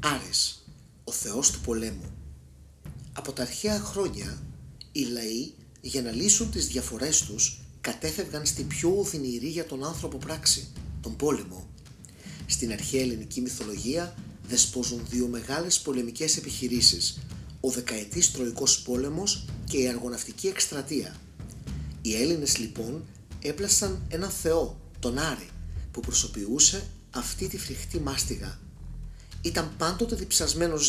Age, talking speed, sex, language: 30-49, 120 wpm, male, Greek